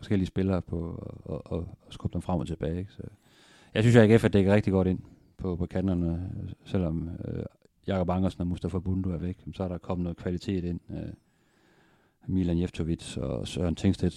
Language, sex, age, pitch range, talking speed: Danish, male, 40-59, 90-105 Hz, 185 wpm